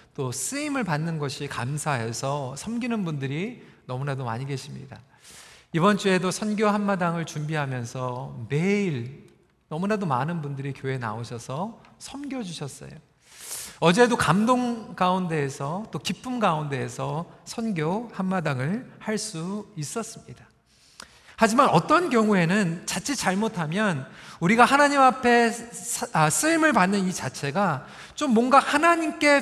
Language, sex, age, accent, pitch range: Korean, male, 40-59, native, 165-245 Hz